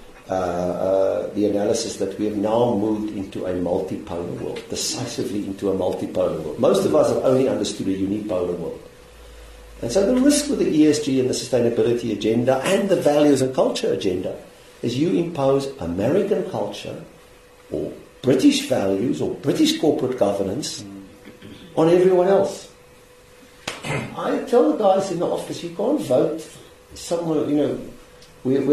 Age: 50-69